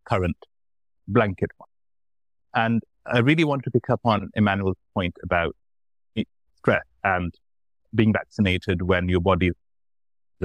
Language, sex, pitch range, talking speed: English, male, 85-115 Hz, 125 wpm